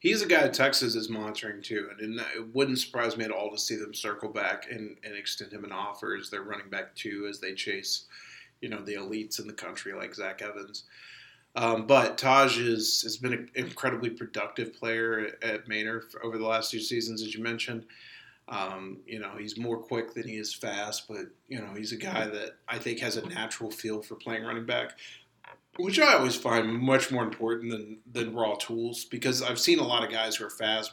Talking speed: 215 wpm